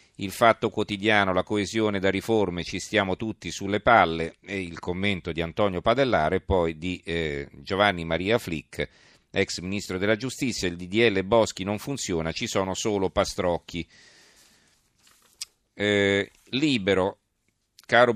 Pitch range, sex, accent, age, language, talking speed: 90-110 Hz, male, native, 40-59, Italian, 130 wpm